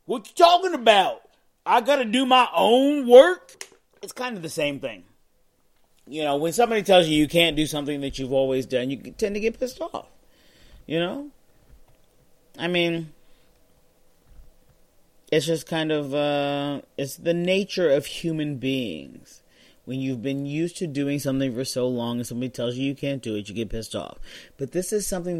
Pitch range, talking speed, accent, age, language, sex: 125-175 Hz, 185 wpm, American, 30-49, English, male